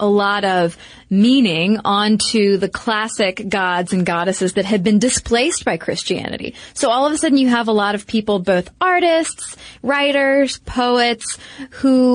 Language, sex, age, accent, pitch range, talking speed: English, female, 20-39, American, 190-250 Hz, 160 wpm